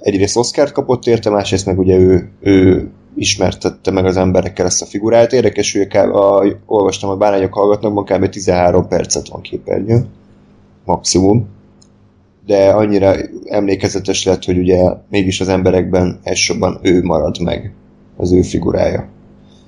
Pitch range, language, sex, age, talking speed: 95-105 Hz, Hungarian, male, 20-39, 145 wpm